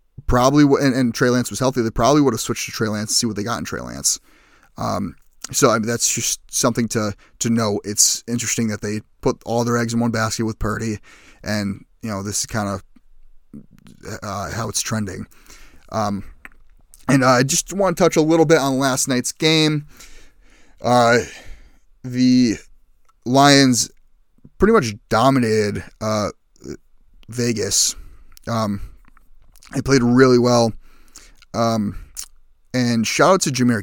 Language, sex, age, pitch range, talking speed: English, male, 30-49, 110-135 Hz, 155 wpm